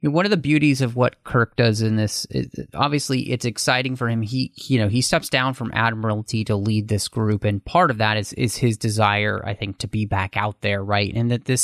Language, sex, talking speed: English, male, 240 wpm